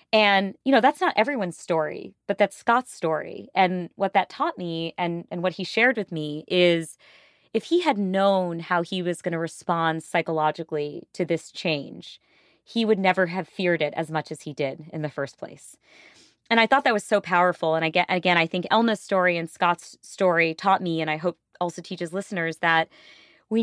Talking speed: 200 wpm